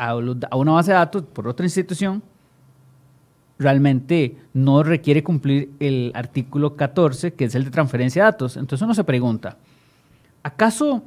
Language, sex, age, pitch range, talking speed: Spanish, male, 40-59, 140-195 Hz, 145 wpm